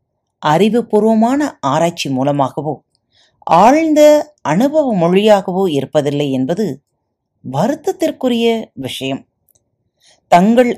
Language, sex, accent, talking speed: Tamil, female, native, 60 wpm